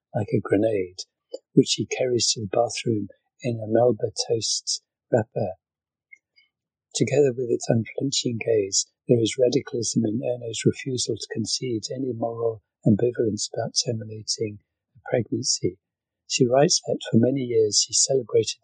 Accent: British